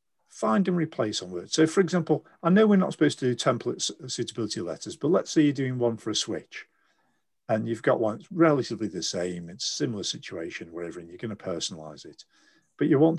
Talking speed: 220 wpm